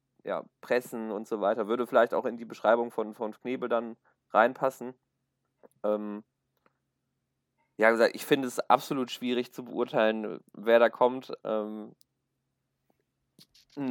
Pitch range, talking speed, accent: 115-140 Hz, 130 wpm, German